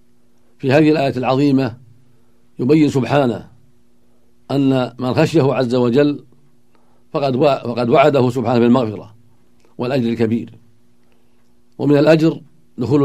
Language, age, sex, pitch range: Arabic, 60-79, male, 120-140 Hz